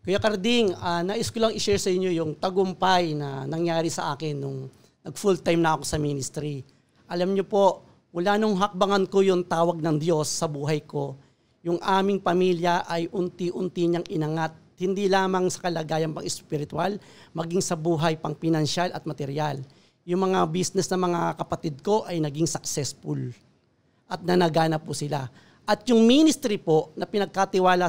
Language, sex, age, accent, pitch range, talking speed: Filipino, male, 40-59, native, 160-195 Hz, 155 wpm